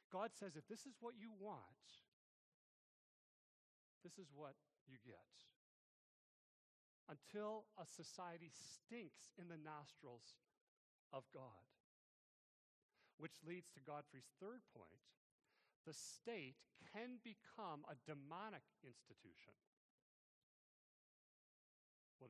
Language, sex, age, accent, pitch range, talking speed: English, male, 40-59, American, 140-185 Hz, 95 wpm